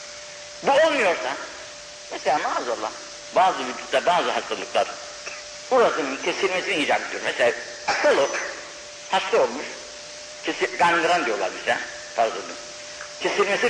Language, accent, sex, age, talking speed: Turkish, native, male, 60-79, 95 wpm